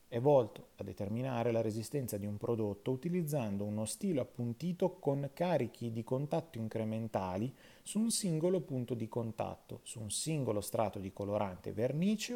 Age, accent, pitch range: 30-49, native, 110-160 Hz